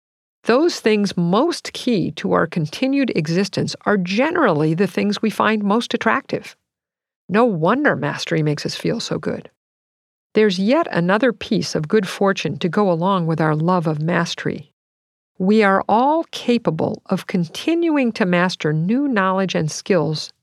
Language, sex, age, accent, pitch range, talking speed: English, female, 50-69, American, 170-230 Hz, 150 wpm